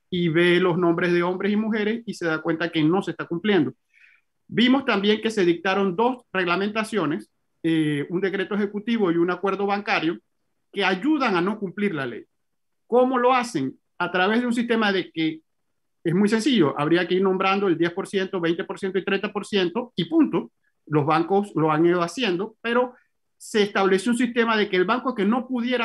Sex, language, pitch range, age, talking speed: male, Spanish, 175-220 Hz, 50-69, 190 wpm